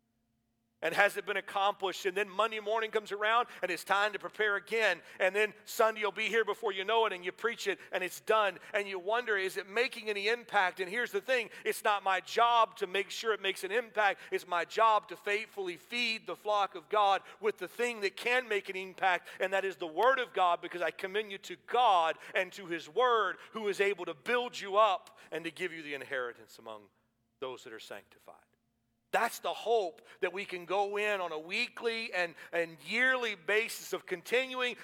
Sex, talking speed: male, 220 wpm